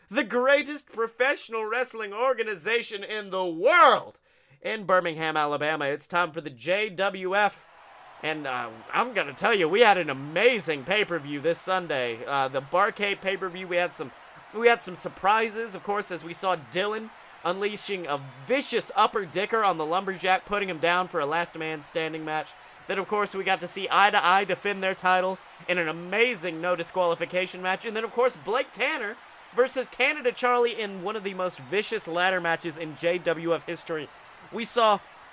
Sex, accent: male, American